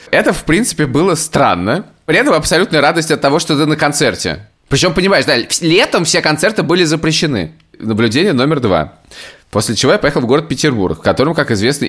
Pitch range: 100-140 Hz